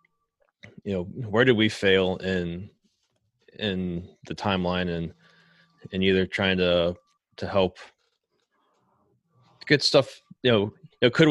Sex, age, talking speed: male, 20-39, 120 wpm